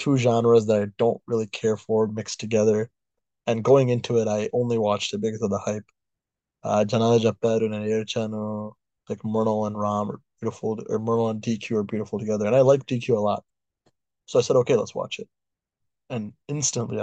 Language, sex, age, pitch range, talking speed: English, male, 20-39, 105-115 Hz, 185 wpm